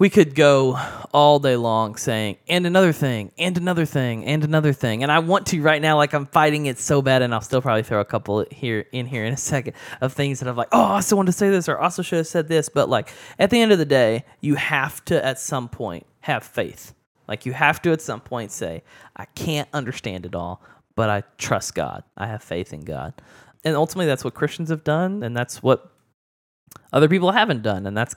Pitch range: 110-150 Hz